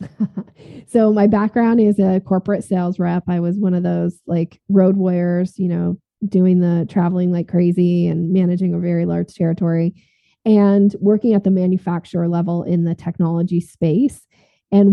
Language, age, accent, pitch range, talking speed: English, 20-39, American, 175-195 Hz, 160 wpm